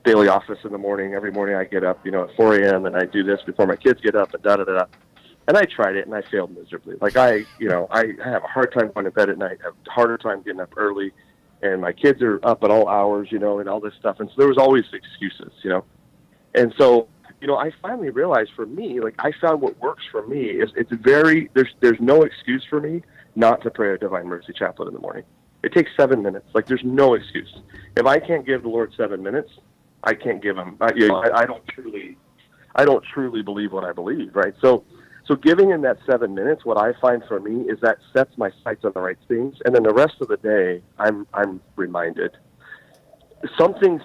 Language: English